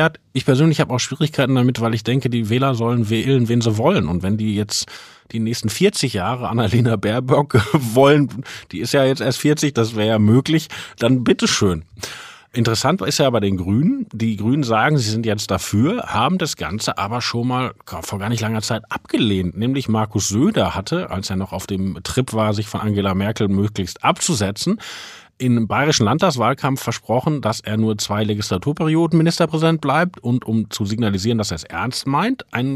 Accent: German